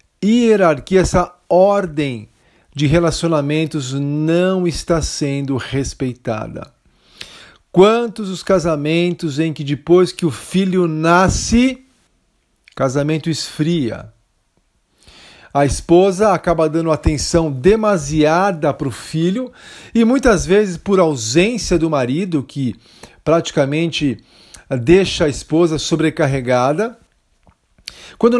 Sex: male